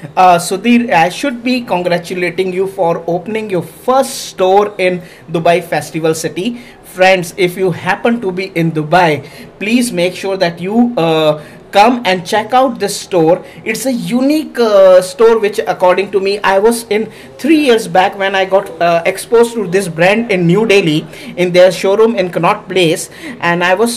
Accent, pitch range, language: Indian, 175-220 Hz, English